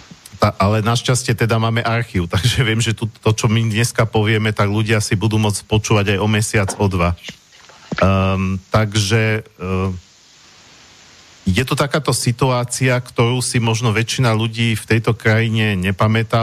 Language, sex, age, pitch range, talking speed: Slovak, male, 50-69, 100-115 Hz, 155 wpm